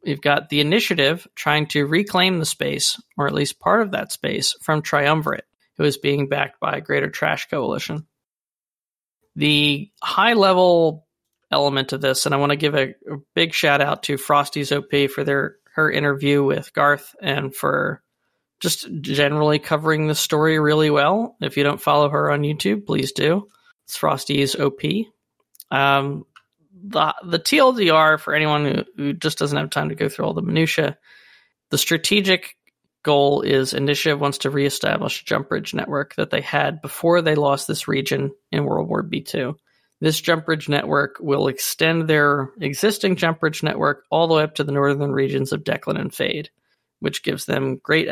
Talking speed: 175 wpm